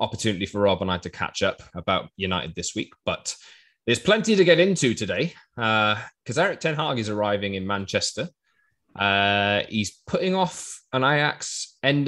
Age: 20-39